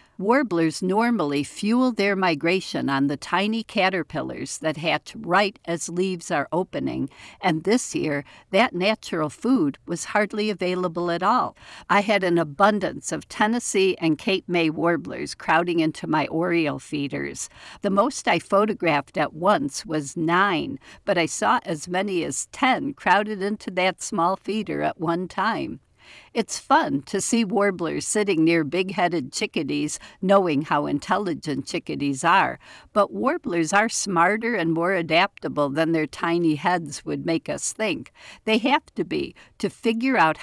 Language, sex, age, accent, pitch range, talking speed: English, female, 60-79, American, 165-210 Hz, 150 wpm